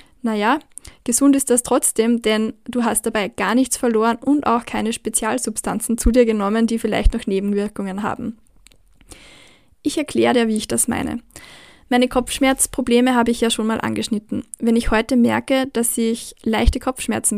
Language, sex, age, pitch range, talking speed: German, female, 10-29, 215-245 Hz, 160 wpm